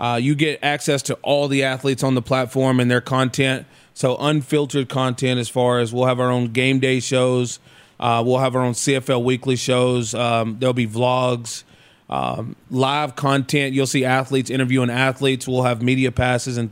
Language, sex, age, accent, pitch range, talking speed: English, male, 20-39, American, 125-140 Hz, 185 wpm